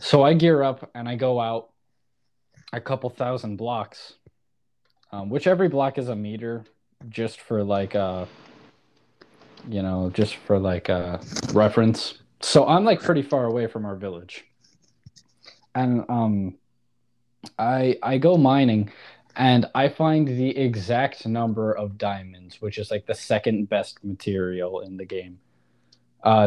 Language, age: English, 20-39